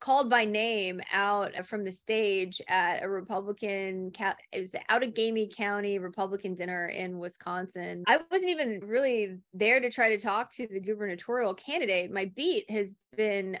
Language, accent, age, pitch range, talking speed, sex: English, American, 20-39, 190-225 Hz, 165 wpm, female